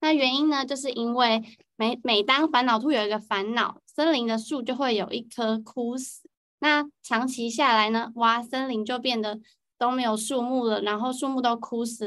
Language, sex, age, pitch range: Chinese, female, 20-39, 215-270 Hz